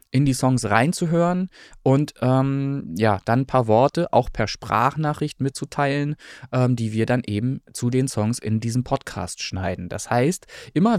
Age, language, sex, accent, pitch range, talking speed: 20-39, German, male, German, 125-160 Hz, 165 wpm